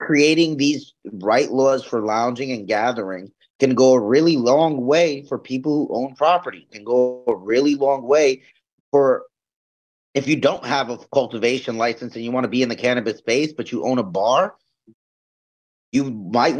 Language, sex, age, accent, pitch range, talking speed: English, male, 30-49, American, 120-150 Hz, 175 wpm